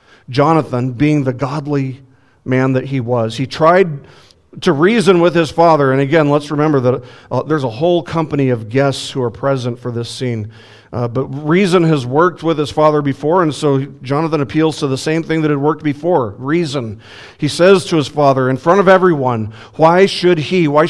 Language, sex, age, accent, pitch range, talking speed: English, male, 50-69, American, 120-160 Hz, 195 wpm